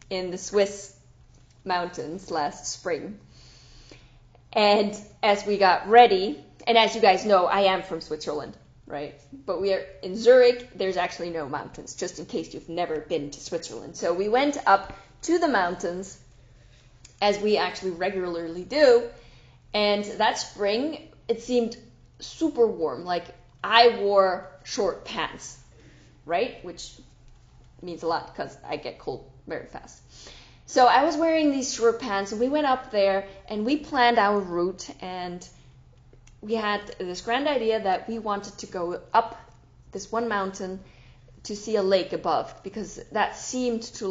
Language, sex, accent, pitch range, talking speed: English, female, American, 180-230 Hz, 155 wpm